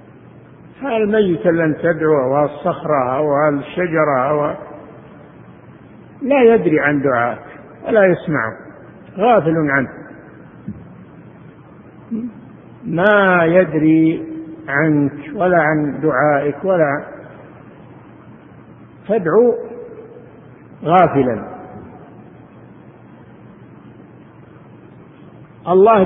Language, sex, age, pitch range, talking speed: Arabic, male, 50-69, 145-185 Hz, 60 wpm